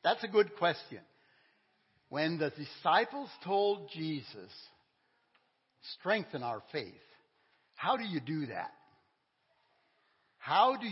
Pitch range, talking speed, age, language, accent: 145-245 Hz, 105 wpm, 60-79, English, American